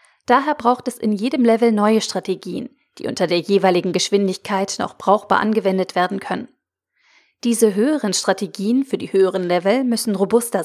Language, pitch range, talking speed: German, 195-250 Hz, 150 wpm